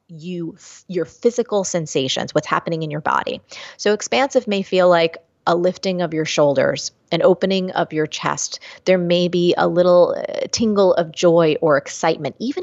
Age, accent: 30-49, American